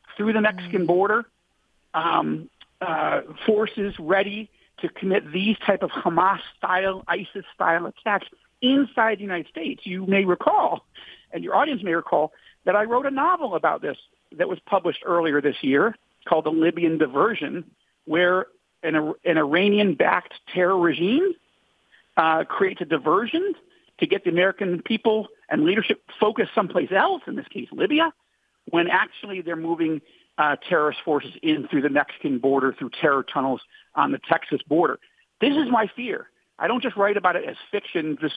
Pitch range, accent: 170-250 Hz, American